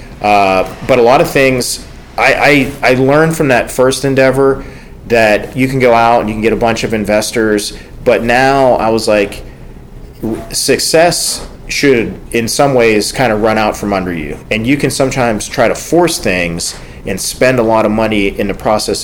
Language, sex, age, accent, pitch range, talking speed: English, male, 40-59, American, 100-130 Hz, 190 wpm